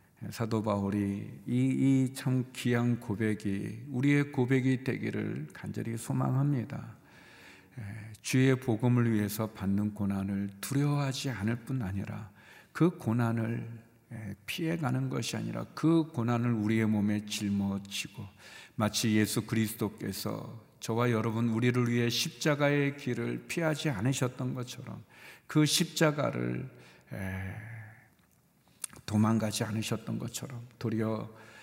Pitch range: 105-130 Hz